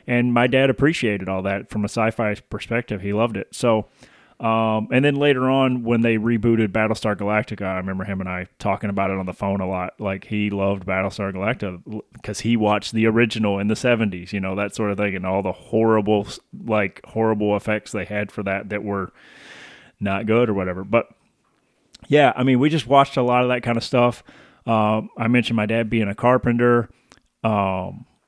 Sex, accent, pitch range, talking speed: male, American, 100-120 Hz, 205 wpm